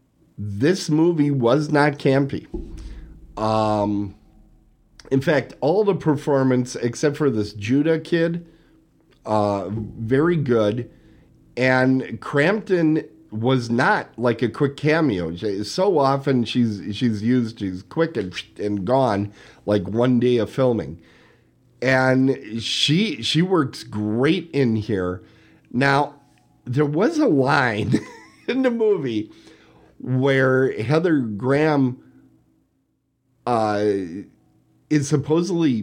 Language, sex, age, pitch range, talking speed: English, male, 50-69, 110-155 Hz, 105 wpm